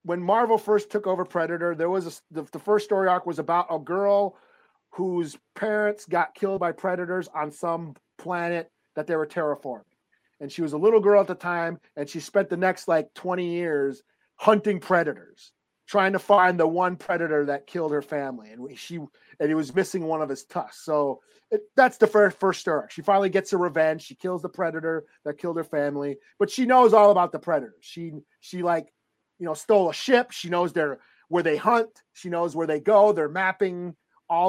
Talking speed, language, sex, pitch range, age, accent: 205 wpm, English, male, 165-200 Hz, 40-59, American